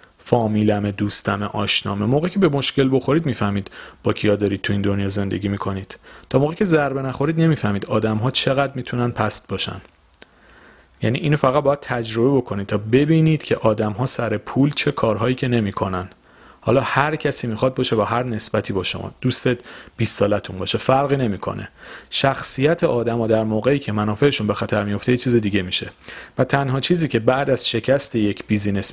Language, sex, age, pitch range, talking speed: Persian, male, 40-59, 105-135 Hz, 175 wpm